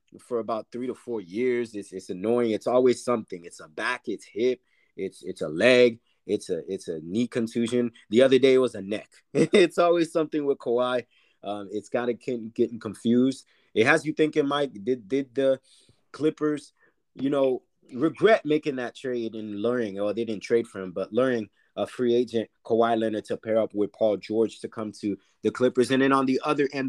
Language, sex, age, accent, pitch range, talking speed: English, male, 30-49, American, 110-130 Hz, 210 wpm